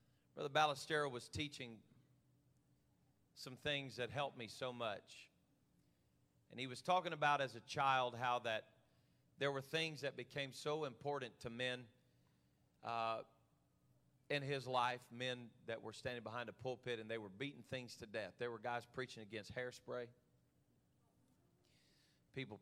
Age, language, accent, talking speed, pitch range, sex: 40-59, English, American, 145 wpm, 115-140 Hz, male